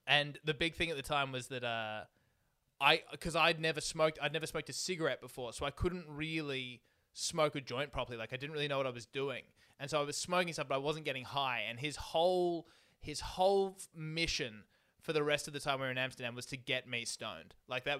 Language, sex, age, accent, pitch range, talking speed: English, male, 20-39, Australian, 125-150 Hz, 240 wpm